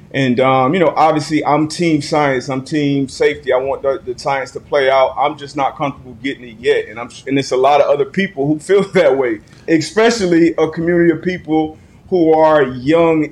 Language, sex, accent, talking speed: English, male, American, 210 wpm